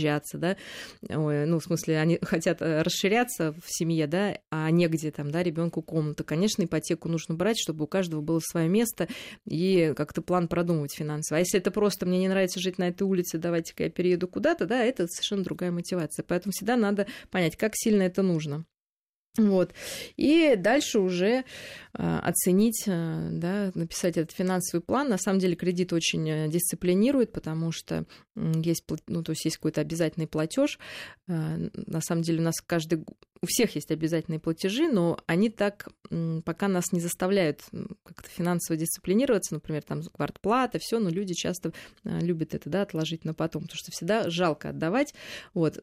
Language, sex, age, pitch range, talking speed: Russian, female, 20-39, 160-195 Hz, 165 wpm